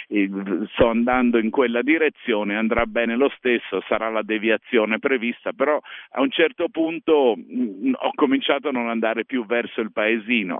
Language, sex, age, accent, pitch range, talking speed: Italian, male, 50-69, native, 110-140 Hz, 165 wpm